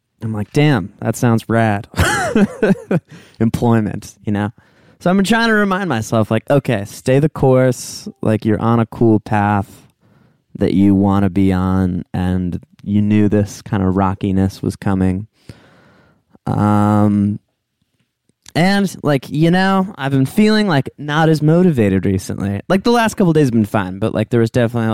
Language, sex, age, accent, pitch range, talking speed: English, male, 20-39, American, 105-160 Hz, 165 wpm